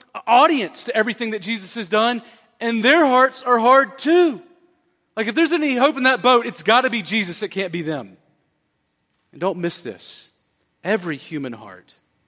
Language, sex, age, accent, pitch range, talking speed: English, male, 40-59, American, 150-225 Hz, 180 wpm